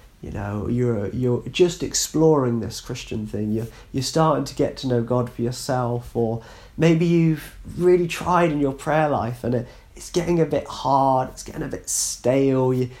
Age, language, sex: 30-49, English, male